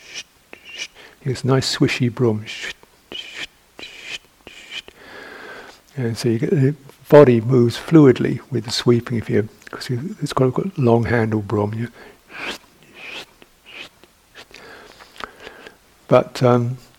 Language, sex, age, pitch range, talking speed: English, male, 60-79, 110-135 Hz, 75 wpm